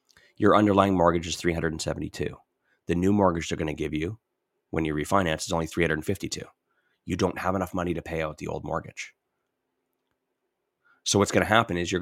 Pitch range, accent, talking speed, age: 80-95 Hz, American, 185 wpm, 30-49